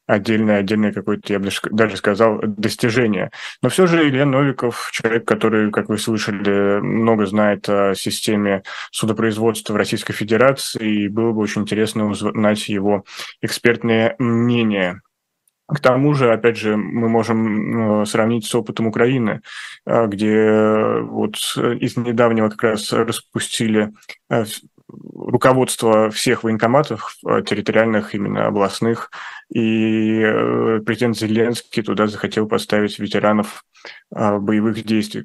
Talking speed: 115 wpm